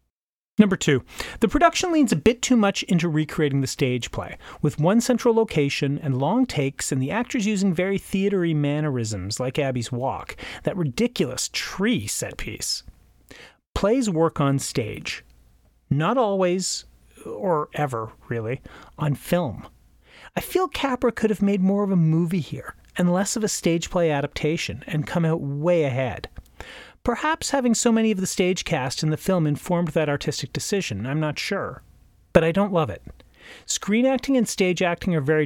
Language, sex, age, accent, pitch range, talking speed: English, male, 40-59, American, 135-205 Hz, 170 wpm